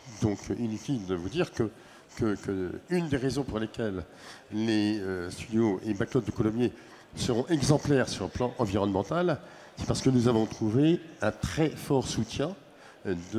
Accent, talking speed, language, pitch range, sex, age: French, 165 wpm, French, 105-140 Hz, male, 60-79